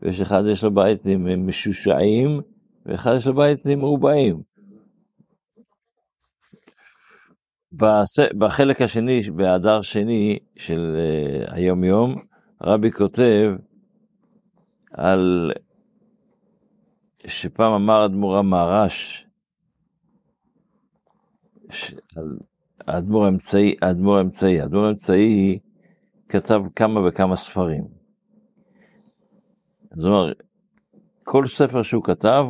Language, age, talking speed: Hebrew, 50-69, 80 wpm